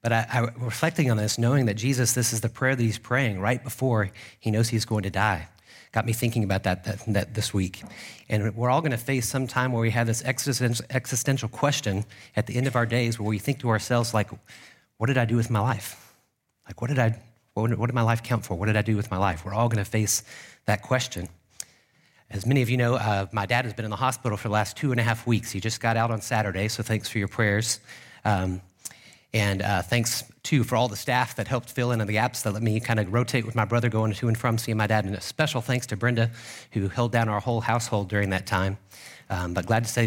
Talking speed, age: 260 wpm, 40-59